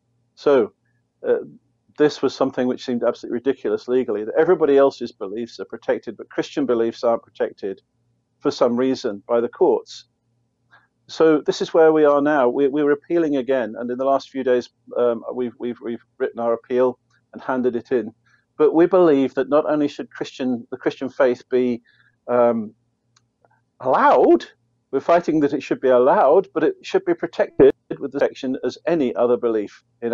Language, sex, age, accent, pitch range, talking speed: English, male, 50-69, British, 120-145 Hz, 175 wpm